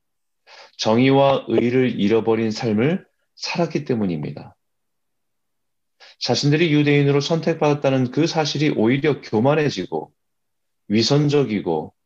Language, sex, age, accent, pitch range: Korean, male, 30-49, native, 95-140 Hz